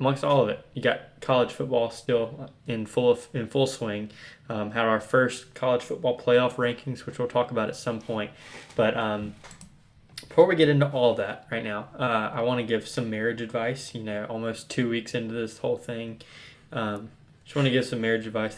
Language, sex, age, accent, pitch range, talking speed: English, male, 20-39, American, 110-135 Hz, 210 wpm